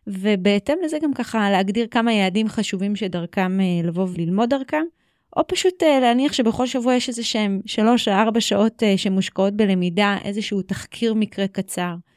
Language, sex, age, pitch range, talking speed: Hebrew, female, 30-49, 190-225 Hz, 150 wpm